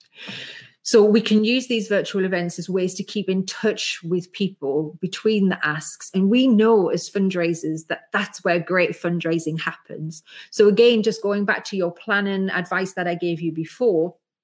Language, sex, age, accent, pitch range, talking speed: English, female, 30-49, British, 165-205 Hz, 180 wpm